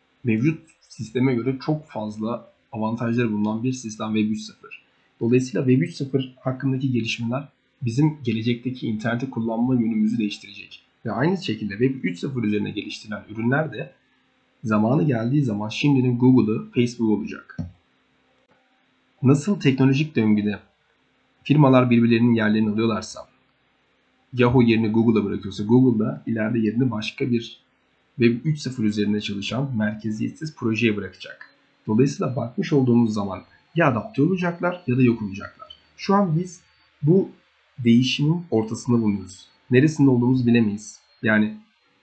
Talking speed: 120 wpm